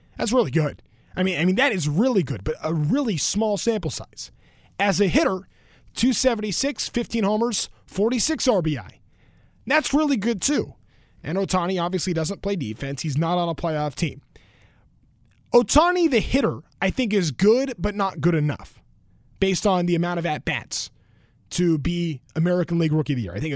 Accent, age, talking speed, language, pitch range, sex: American, 20-39, 175 wpm, English, 150-235 Hz, male